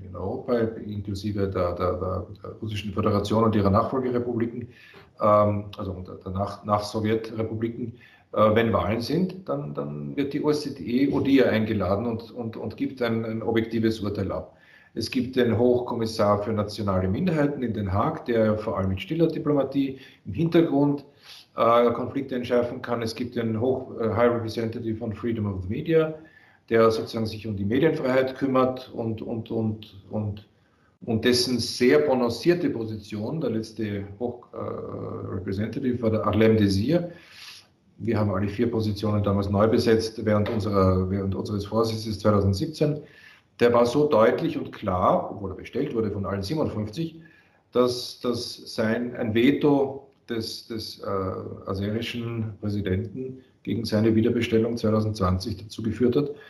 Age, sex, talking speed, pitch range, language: 40-59, male, 150 wpm, 105-125 Hz, German